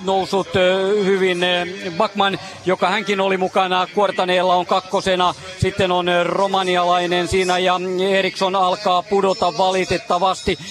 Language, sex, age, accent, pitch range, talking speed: Finnish, male, 40-59, native, 180-195 Hz, 105 wpm